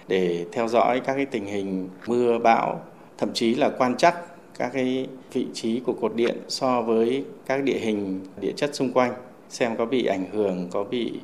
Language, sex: Vietnamese, male